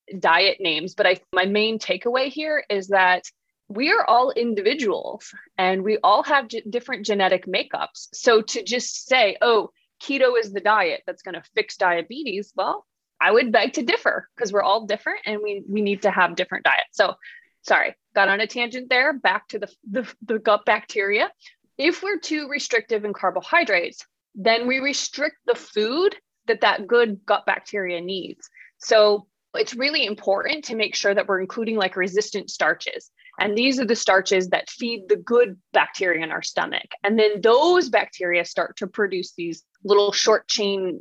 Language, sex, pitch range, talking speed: English, female, 190-260 Hz, 175 wpm